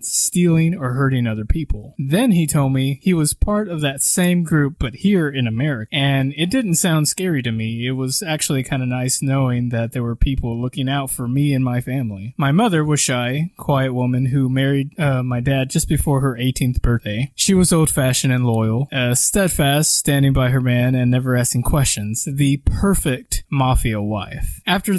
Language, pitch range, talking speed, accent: English, 125-155 Hz, 195 wpm, American